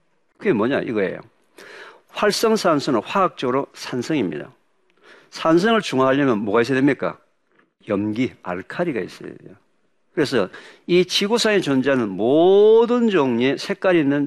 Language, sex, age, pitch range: Korean, male, 50-69, 115-180 Hz